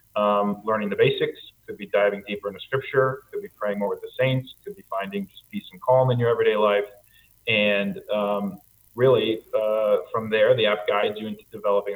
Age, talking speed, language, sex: 30-49, 200 wpm, English, male